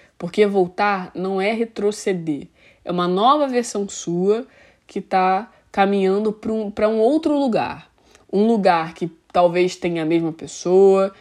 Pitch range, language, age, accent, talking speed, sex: 170-225 Hz, Portuguese, 20-39, Brazilian, 140 wpm, female